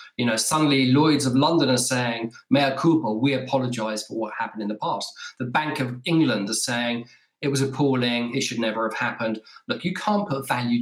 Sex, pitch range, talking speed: male, 120-150 Hz, 205 wpm